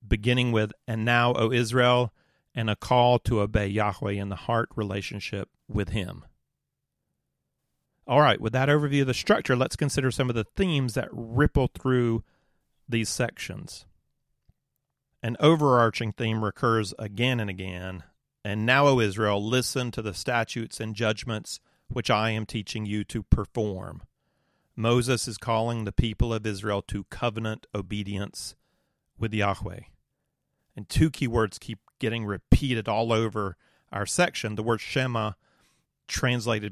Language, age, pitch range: English, 40-59, 105-125 Hz